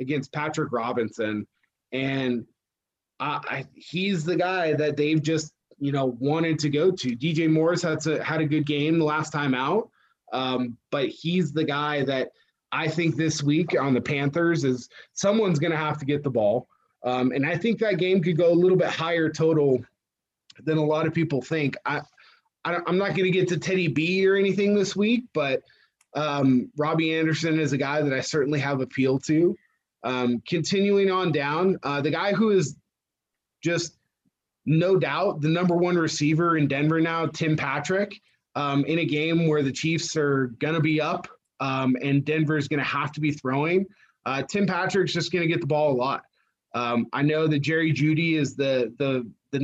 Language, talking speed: English, 195 wpm